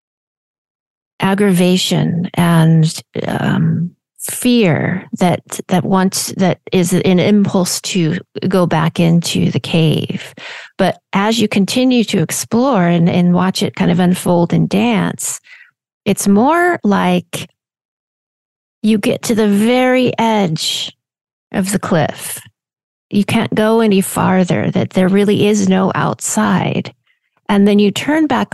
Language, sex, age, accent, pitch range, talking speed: English, female, 40-59, American, 165-205 Hz, 125 wpm